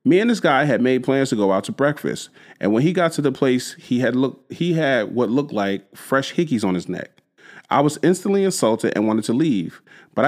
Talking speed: 240 wpm